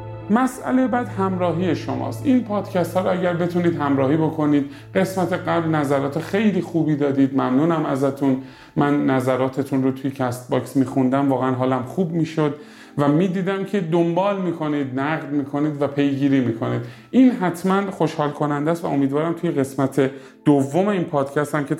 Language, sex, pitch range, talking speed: Persian, male, 135-175 Hz, 150 wpm